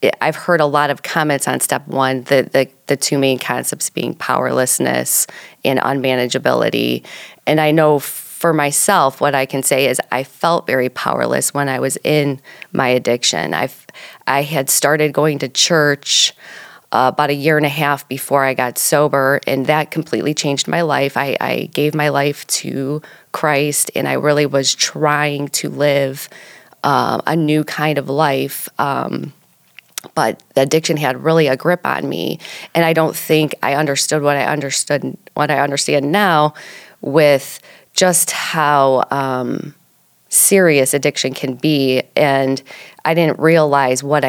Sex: female